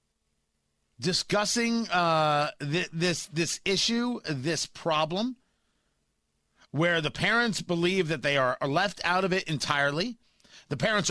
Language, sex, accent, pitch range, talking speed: English, male, American, 140-200 Hz, 115 wpm